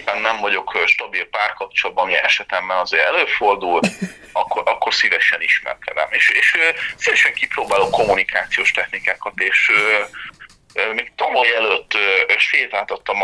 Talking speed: 110 wpm